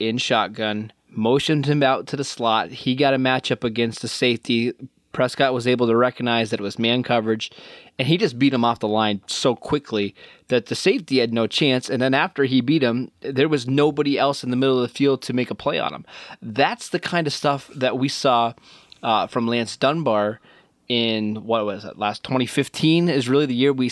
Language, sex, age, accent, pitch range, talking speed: English, male, 20-39, American, 110-135 Hz, 215 wpm